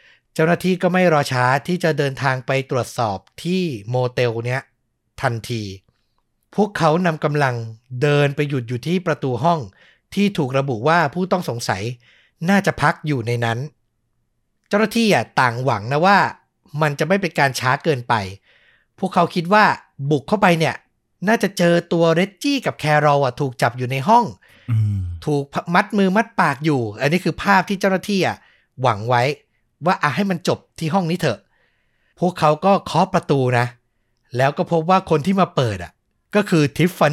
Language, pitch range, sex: Thai, 125-180 Hz, male